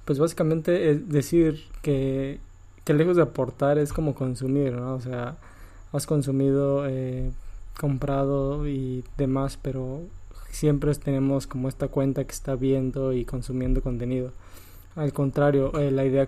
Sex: male